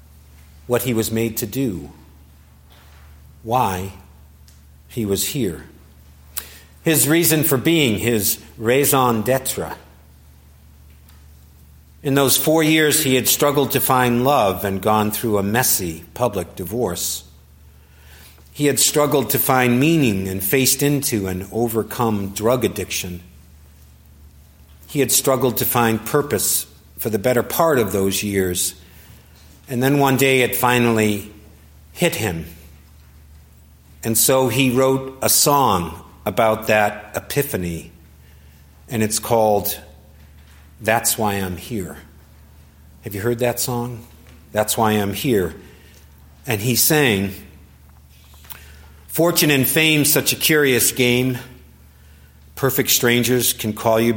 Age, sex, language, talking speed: 50-69, male, English, 120 wpm